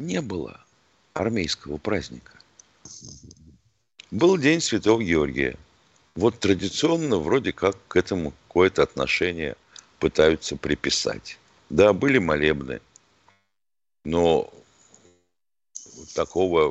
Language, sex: Russian, male